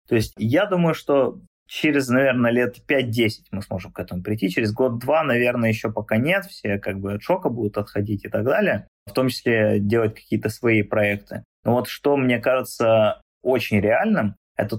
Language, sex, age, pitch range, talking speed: Russian, male, 20-39, 105-130 Hz, 185 wpm